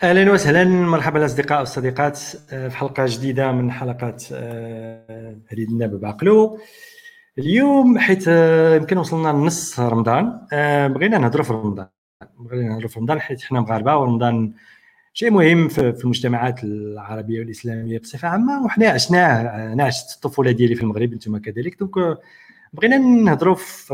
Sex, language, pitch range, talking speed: male, Arabic, 120-175 Hz, 130 wpm